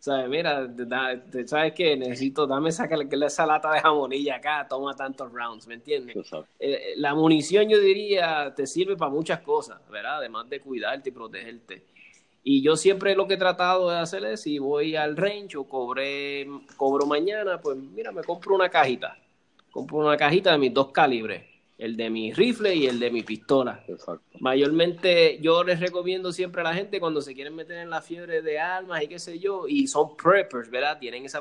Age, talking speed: 20-39, 195 wpm